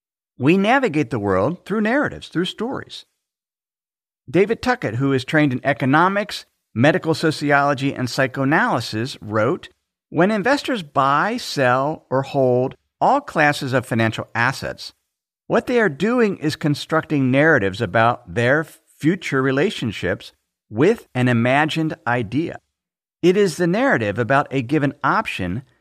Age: 50-69